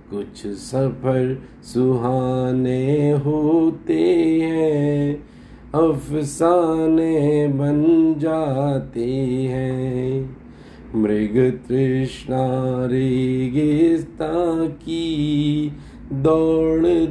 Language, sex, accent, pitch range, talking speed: Hindi, male, native, 130-160 Hz, 50 wpm